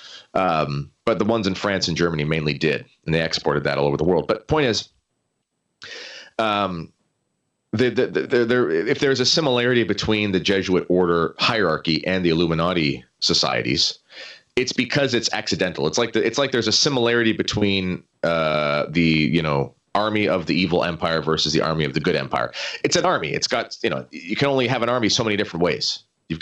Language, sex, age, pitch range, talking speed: English, male, 30-49, 85-115 Hz, 200 wpm